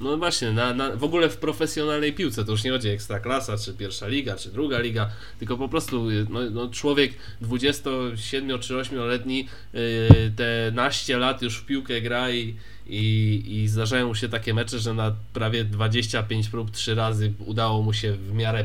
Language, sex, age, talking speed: Polish, male, 20-39, 170 wpm